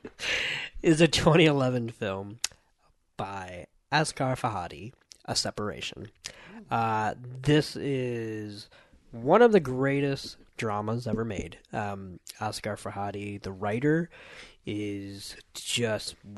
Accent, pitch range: American, 95-115 Hz